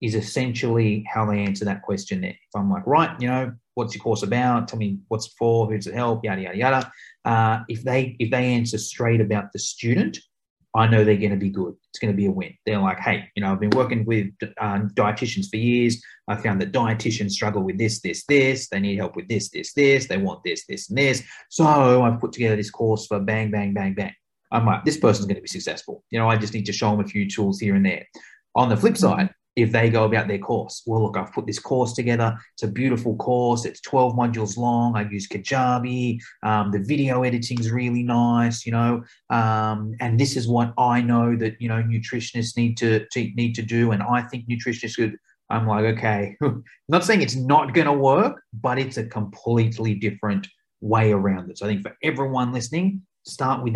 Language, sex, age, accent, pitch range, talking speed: English, male, 30-49, Australian, 105-125 Hz, 230 wpm